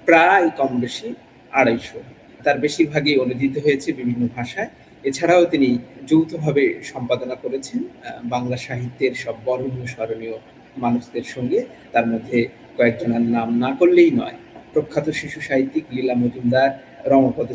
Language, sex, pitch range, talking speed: Bengali, male, 120-155 Hz, 120 wpm